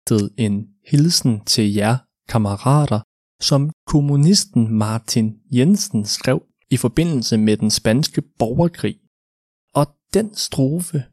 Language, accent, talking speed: Danish, native, 100 wpm